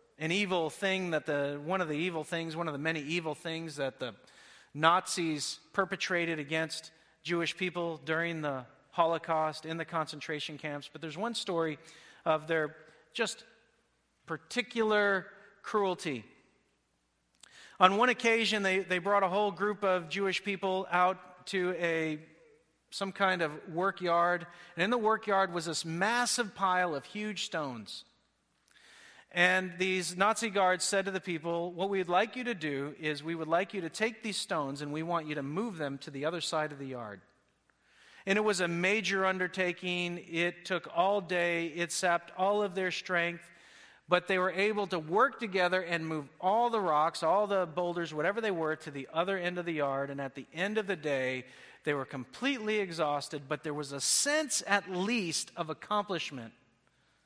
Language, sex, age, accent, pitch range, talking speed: English, male, 40-59, American, 155-195 Hz, 175 wpm